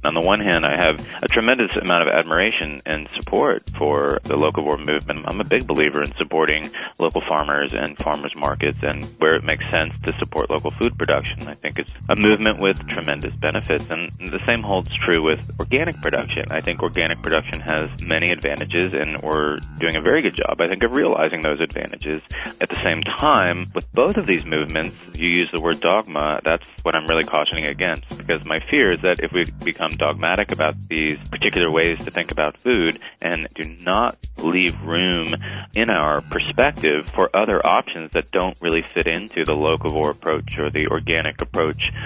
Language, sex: English, male